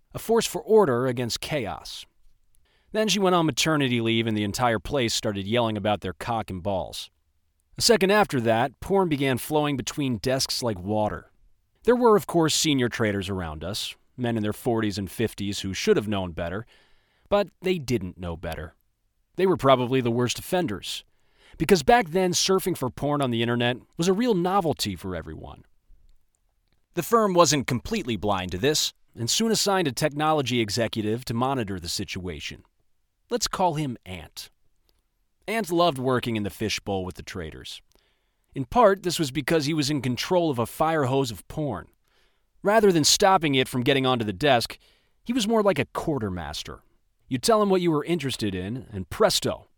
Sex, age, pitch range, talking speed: male, 40-59, 105-165 Hz, 180 wpm